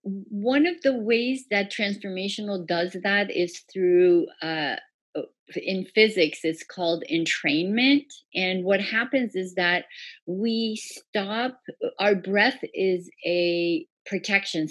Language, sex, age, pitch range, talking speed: English, female, 40-59, 170-215 Hz, 115 wpm